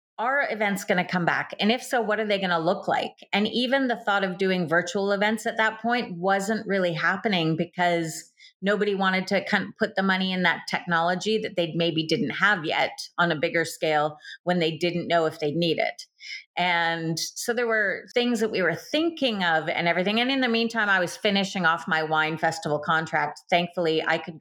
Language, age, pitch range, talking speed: English, 30-49, 165-210 Hz, 210 wpm